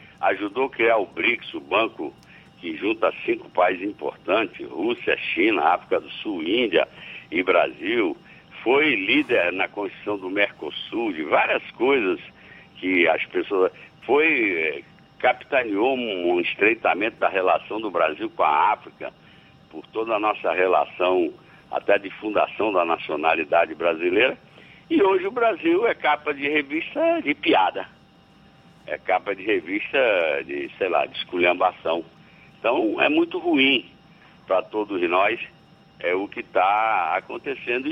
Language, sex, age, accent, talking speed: Portuguese, male, 60-79, Brazilian, 135 wpm